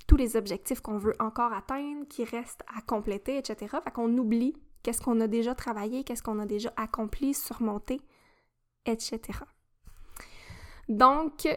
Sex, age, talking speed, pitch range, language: female, 10-29, 145 wpm, 230-270 Hz, French